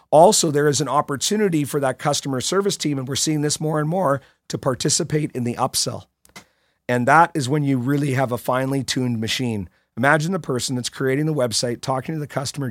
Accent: American